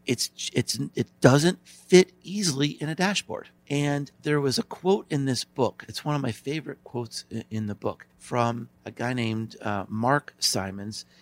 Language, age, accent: English, 50-69, American